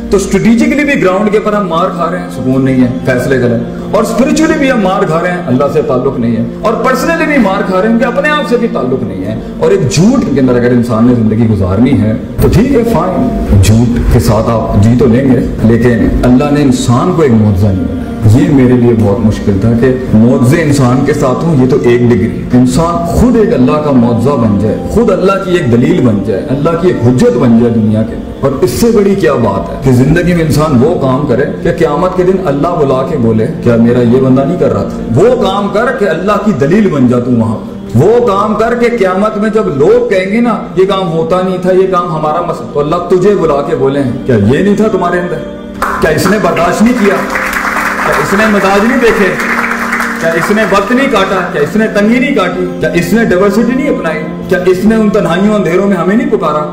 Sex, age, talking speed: male, 40-59, 200 wpm